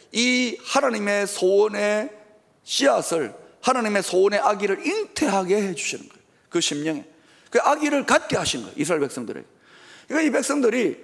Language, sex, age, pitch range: Korean, male, 40-59, 205-250 Hz